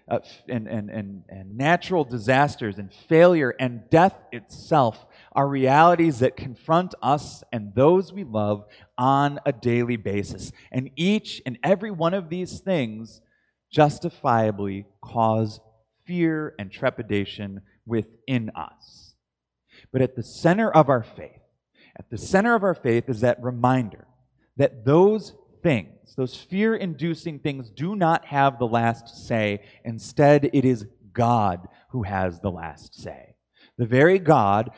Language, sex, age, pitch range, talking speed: English, male, 30-49, 110-155 Hz, 140 wpm